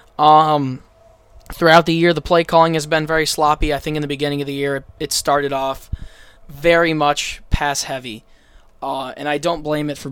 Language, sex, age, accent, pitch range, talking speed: English, male, 20-39, American, 140-160 Hz, 195 wpm